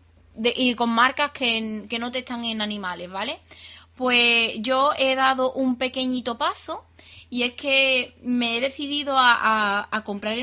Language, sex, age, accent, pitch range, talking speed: Spanish, female, 20-39, Spanish, 220-255 Hz, 175 wpm